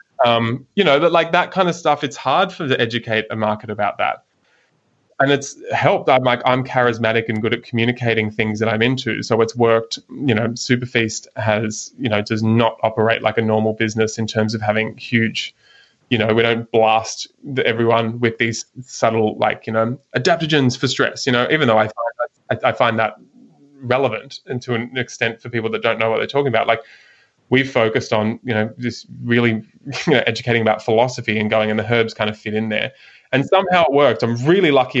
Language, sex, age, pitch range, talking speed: English, male, 20-39, 110-125 Hz, 215 wpm